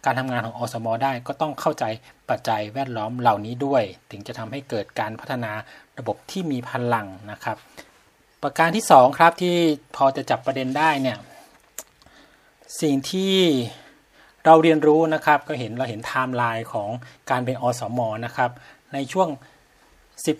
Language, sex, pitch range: Thai, male, 120-150 Hz